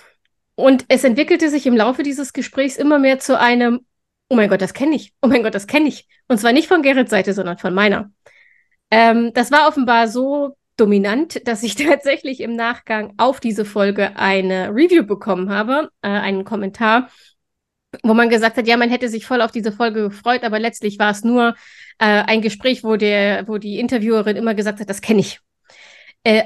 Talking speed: 195 wpm